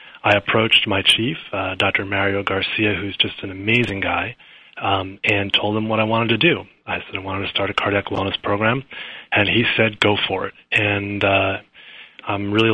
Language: English